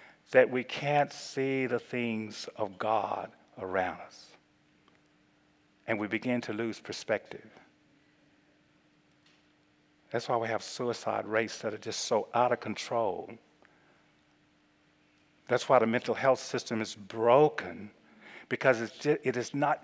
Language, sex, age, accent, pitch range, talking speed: English, male, 50-69, American, 120-200 Hz, 125 wpm